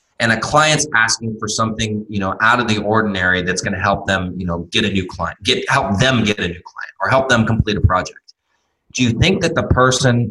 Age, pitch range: 20-39, 95-125 Hz